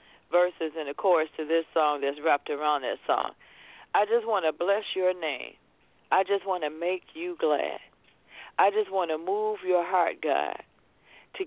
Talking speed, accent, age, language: 185 wpm, American, 50-69, English